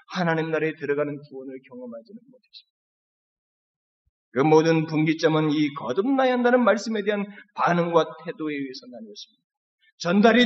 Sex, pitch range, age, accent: male, 170-265 Hz, 30-49, native